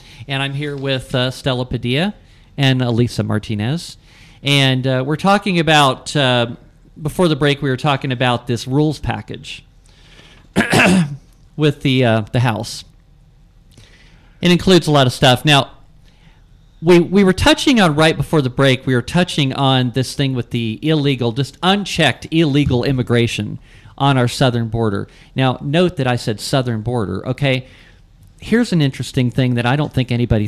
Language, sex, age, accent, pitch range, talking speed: English, male, 40-59, American, 125-150 Hz, 160 wpm